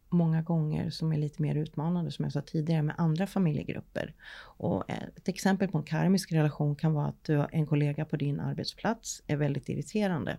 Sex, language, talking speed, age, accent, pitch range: female, Swedish, 195 wpm, 30-49, native, 150-175 Hz